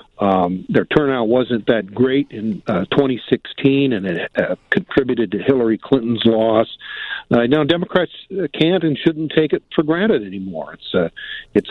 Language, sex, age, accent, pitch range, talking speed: English, male, 50-69, American, 110-155 Hz, 150 wpm